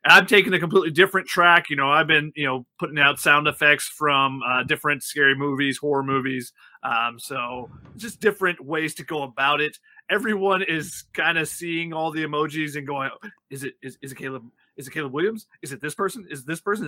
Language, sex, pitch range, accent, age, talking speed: English, male, 150-190 Hz, American, 30-49, 215 wpm